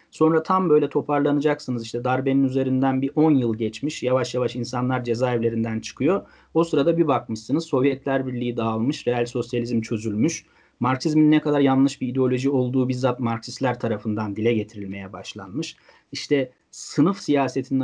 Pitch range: 120-140 Hz